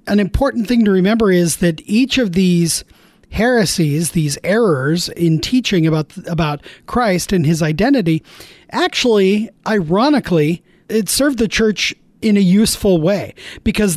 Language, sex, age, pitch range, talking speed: English, male, 40-59, 165-215 Hz, 140 wpm